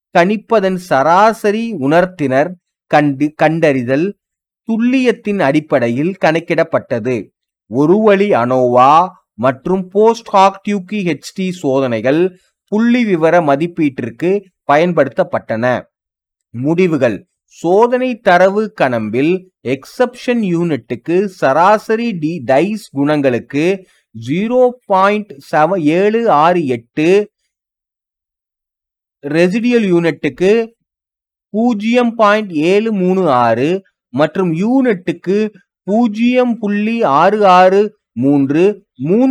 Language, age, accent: Tamil, 30-49, native